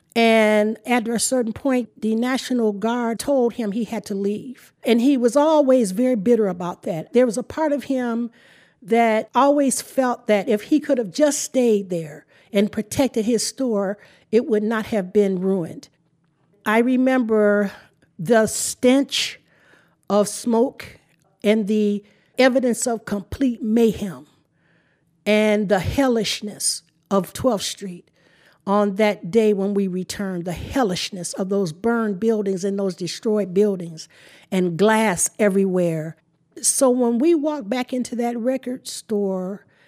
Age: 50-69